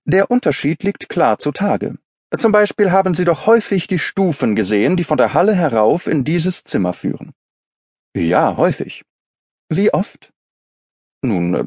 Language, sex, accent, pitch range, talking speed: German, male, German, 115-190 Hz, 145 wpm